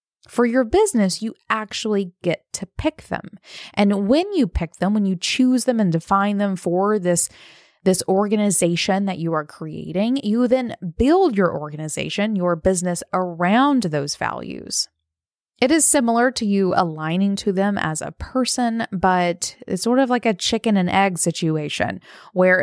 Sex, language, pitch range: female, English, 175-225 Hz